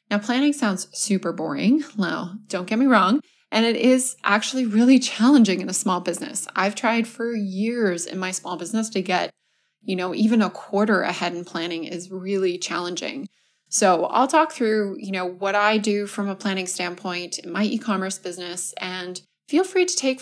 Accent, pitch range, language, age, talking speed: American, 180-225 Hz, English, 20-39, 185 wpm